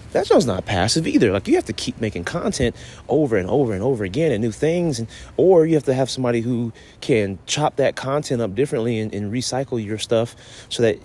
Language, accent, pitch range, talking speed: English, American, 105-135 Hz, 230 wpm